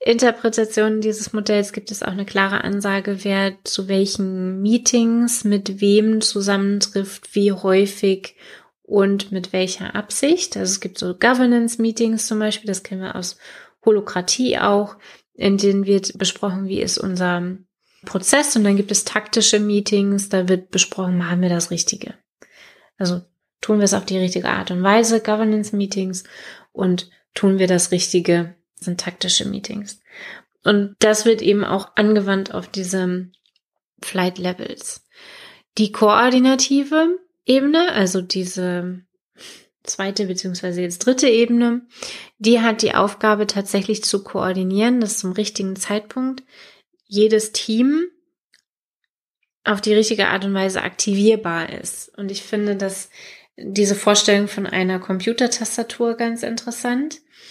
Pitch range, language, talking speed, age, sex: 190-220 Hz, German, 130 wpm, 20-39, female